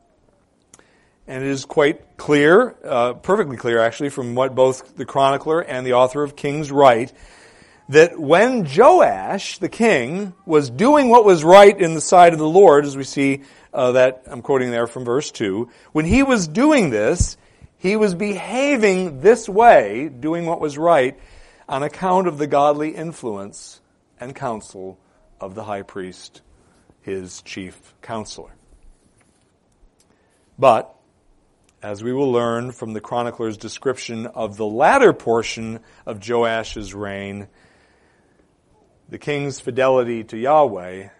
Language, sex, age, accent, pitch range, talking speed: English, male, 50-69, American, 100-150 Hz, 140 wpm